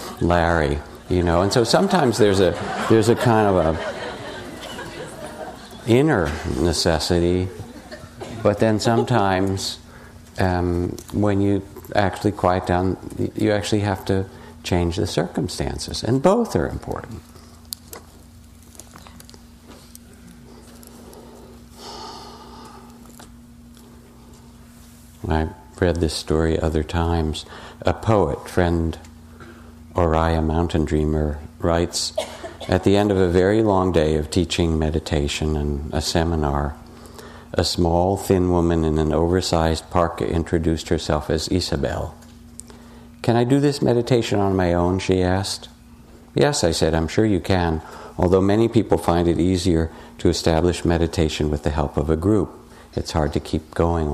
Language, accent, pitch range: English, American, 80-100 Hz